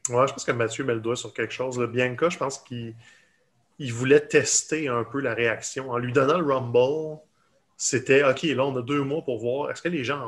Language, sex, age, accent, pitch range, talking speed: French, male, 30-49, Canadian, 115-145 Hz, 240 wpm